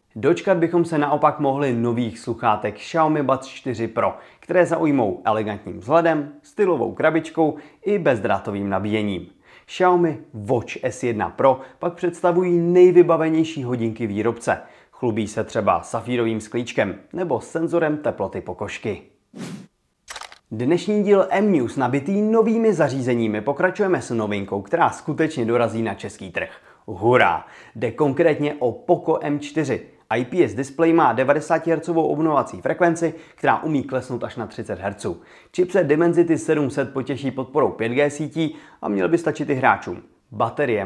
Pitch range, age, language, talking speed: 115-165 Hz, 30-49, Czech, 130 wpm